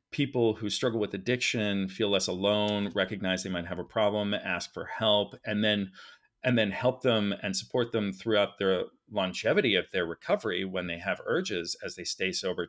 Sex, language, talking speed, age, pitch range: male, English, 190 wpm, 40-59, 100-125 Hz